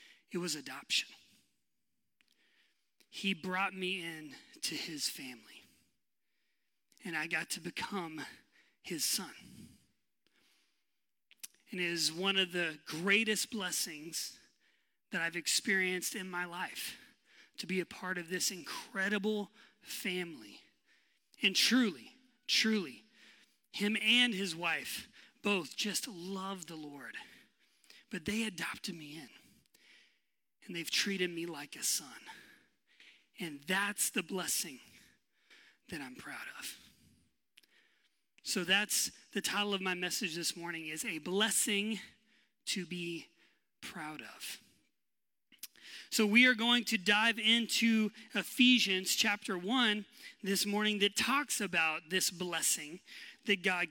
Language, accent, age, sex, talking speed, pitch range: English, American, 30-49, male, 120 wpm, 180-225 Hz